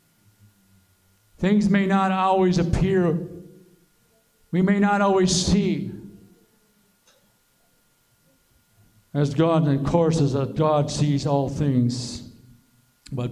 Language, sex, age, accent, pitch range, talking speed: English, male, 60-79, American, 140-170 Hz, 100 wpm